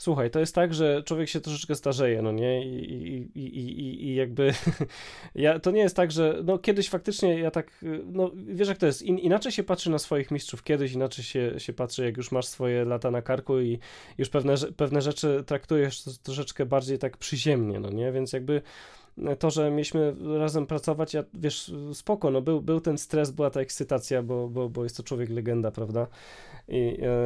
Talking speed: 190 wpm